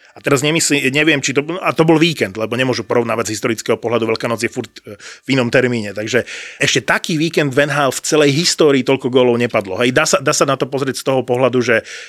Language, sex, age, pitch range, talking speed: Slovak, male, 30-49, 120-145 Hz, 235 wpm